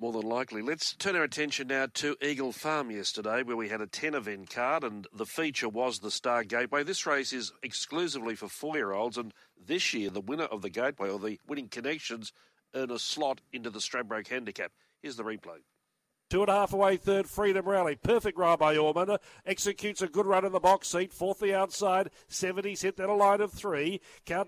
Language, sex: English, male